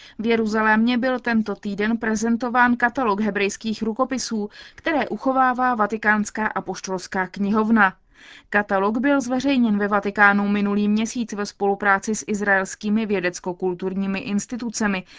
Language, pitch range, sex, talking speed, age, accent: Czech, 195-240 Hz, female, 105 wpm, 20-39, native